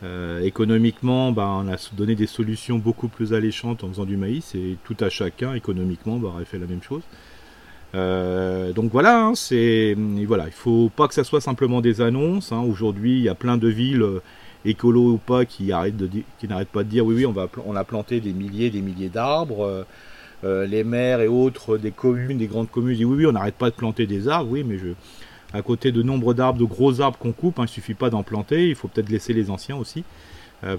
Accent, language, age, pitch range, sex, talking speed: French, French, 40-59, 100-125 Hz, male, 245 wpm